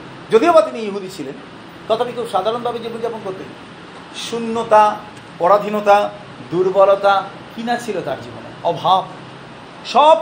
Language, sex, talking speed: Bengali, male, 110 wpm